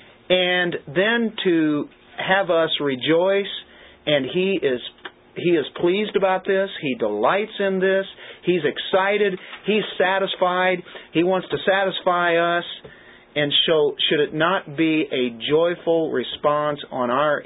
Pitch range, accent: 125-180 Hz, American